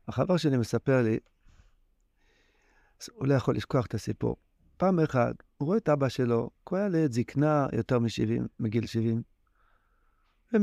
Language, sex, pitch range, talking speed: Hebrew, male, 115-155 Hz, 140 wpm